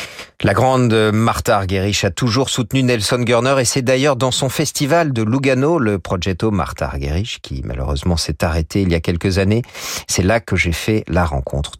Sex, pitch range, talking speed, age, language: male, 85-115 Hz, 190 wpm, 40-59, French